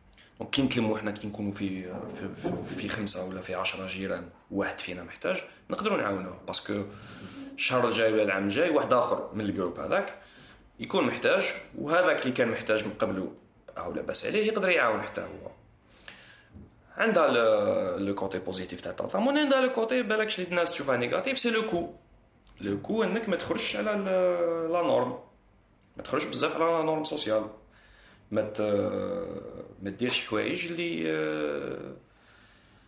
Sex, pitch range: male, 100-150 Hz